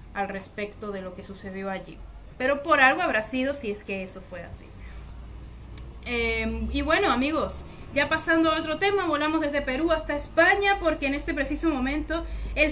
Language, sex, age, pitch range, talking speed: Spanish, female, 30-49, 215-285 Hz, 180 wpm